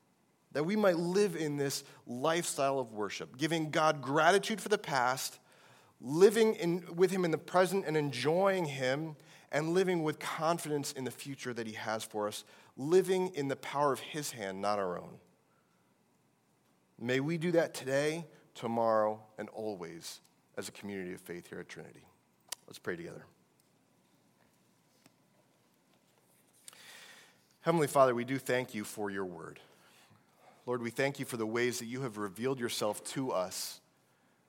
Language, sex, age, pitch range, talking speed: English, male, 30-49, 110-150 Hz, 155 wpm